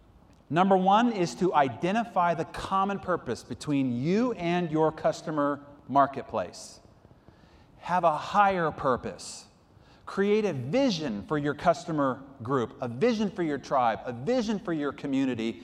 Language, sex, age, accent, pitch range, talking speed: English, male, 40-59, American, 120-170 Hz, 135 wpm